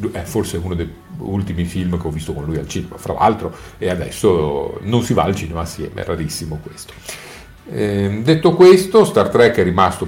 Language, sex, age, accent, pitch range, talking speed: Italian, male, 40-59, native, 95-130 Hz, 190 wpm